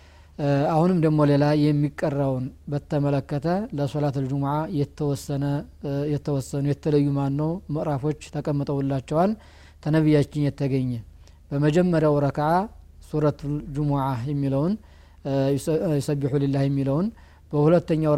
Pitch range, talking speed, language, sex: 135-155 Hz, 80 wpm, Amharic, male